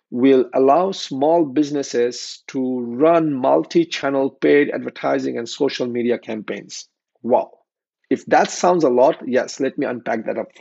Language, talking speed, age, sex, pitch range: English, 140 wpm, 50-69, male, 135-210 Hz